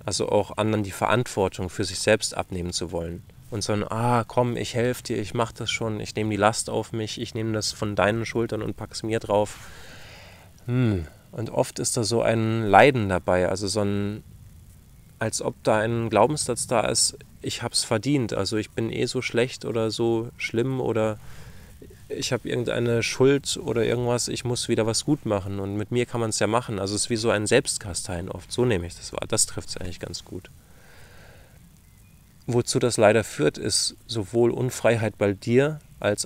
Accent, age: German, 20-39